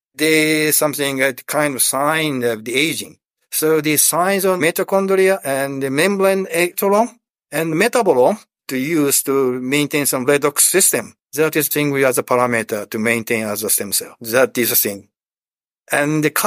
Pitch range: 130-170 Hz